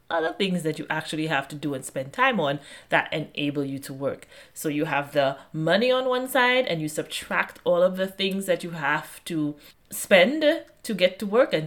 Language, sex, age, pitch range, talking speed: English, female, 30-49, 150-195 Hz, 215 wpm